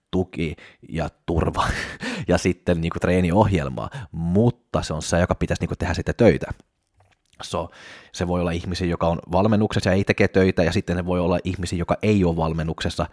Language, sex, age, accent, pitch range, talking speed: Finnish, male, 30-49, native, 80-95 Hz, 180 wpm